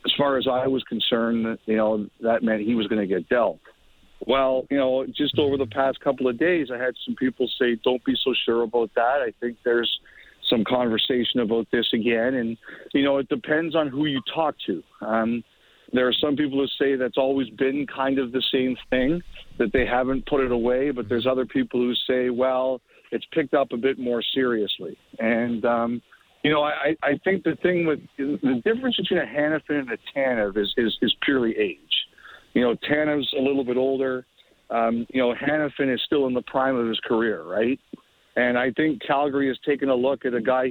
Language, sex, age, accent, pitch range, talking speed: English, male, 50-69, American, 120-140 Hz, 210 wpm